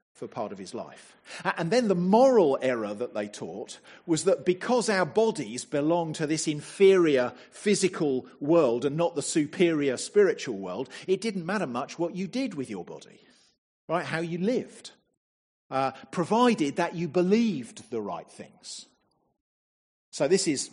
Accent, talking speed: British, 160 wpm